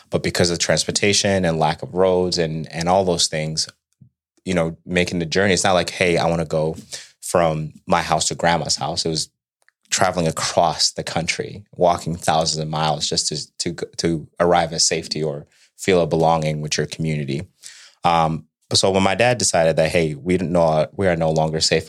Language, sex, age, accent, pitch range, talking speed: English, male, 30-49, American, 80-90 Hz, 195 wpm